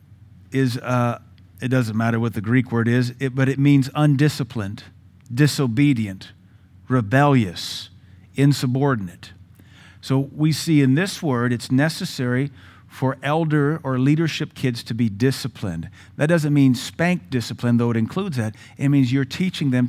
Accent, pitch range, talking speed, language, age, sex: American, 115-145 Hz, 140 wpm, English, 50-69, male